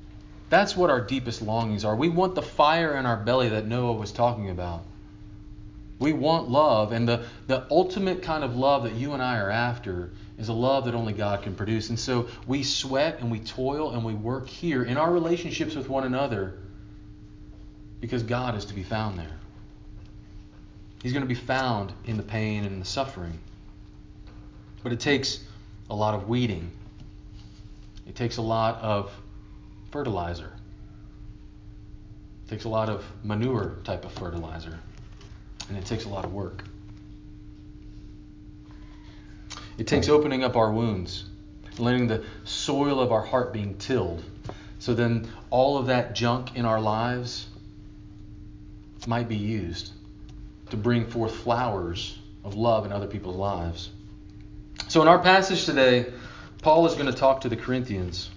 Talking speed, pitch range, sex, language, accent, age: 160 wpm, 100-120 Hz, male, English, American, 40-59